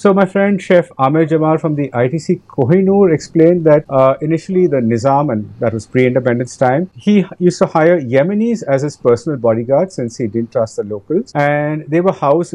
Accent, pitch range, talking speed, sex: Indian, 135-185 Hz, 195 wpm, male